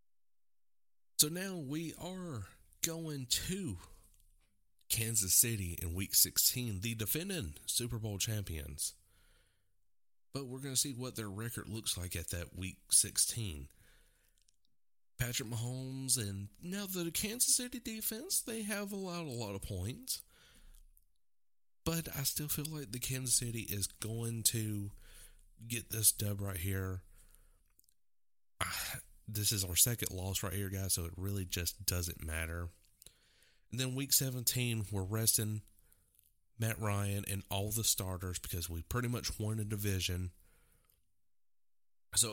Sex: male